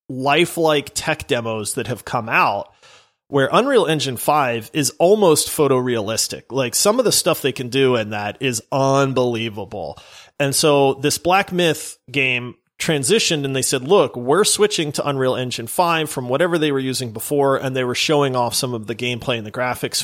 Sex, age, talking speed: male, 30-49, 185 wpm